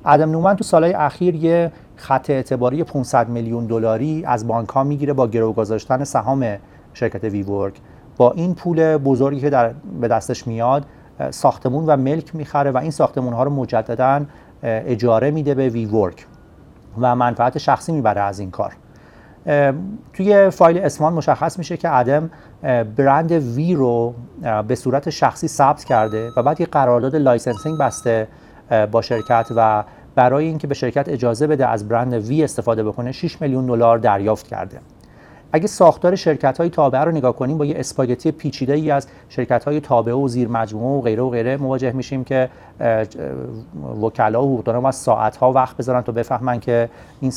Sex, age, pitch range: male, 40-59, 115-150 Hz